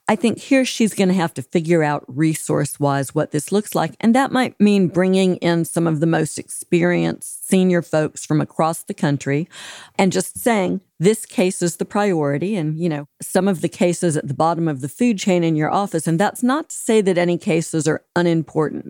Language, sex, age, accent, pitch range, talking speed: English, female, 50-69, American, 155-195 Hz, 215 wpm